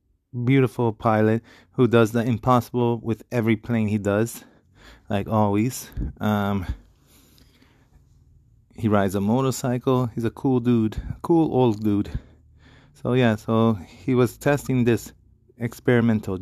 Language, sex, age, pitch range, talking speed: English, male, 20-39, 105-120 Hz, 120 wpm